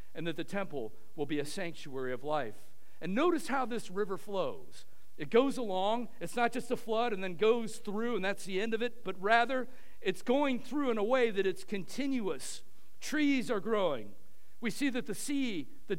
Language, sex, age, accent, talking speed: English, male, 50-69, American, 205 wpm